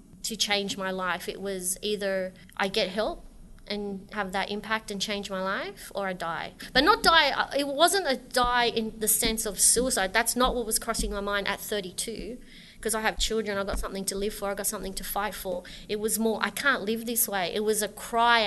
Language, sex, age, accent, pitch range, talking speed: English, female, 30-49, Australian, 195-225 Hz, 225 wpm